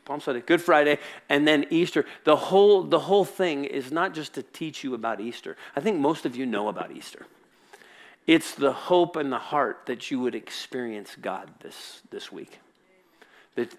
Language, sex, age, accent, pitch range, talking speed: English, male, 50-69, American, 120-150 Hz, 180 wpm